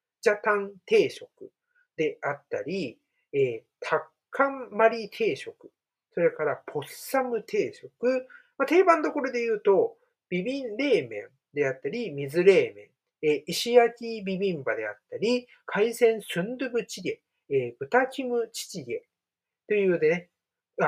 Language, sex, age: Japanese, male, 50-69